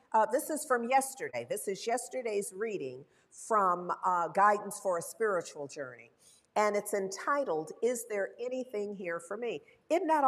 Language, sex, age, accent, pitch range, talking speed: English, female, 50-69, American, 205-285 Hz, 160 wpm